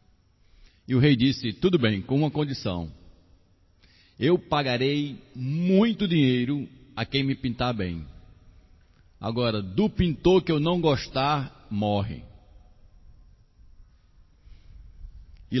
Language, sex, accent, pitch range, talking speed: Portuguese, male, Brazilian, 90-140 Hz, 105 wpm